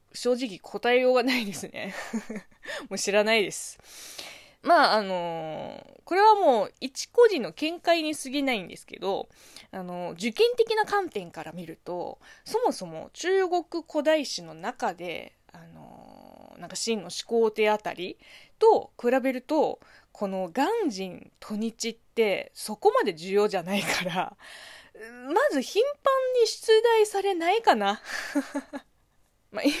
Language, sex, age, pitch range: Japanese, female, 20-39, 185-290 Hz